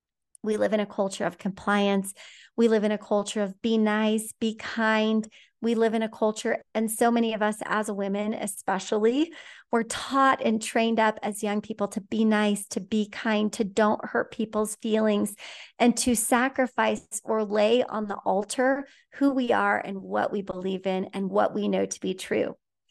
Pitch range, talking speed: 210-250 Hz, 190 wpm